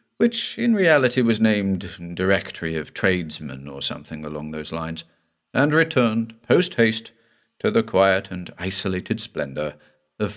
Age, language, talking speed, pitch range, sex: 50-69, English, 140 wpm, 85-115 Hz, male